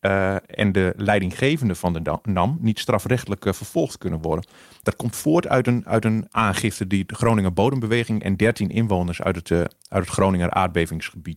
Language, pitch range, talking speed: Dutch, 95-125 Hz, 185 wpm